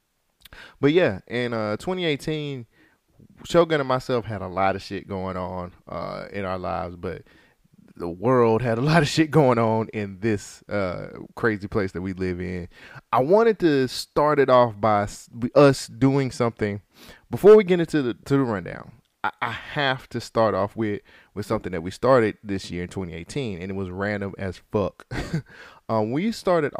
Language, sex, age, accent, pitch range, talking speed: English, male, 20-39, American, 95-135 Hz, 180 wpm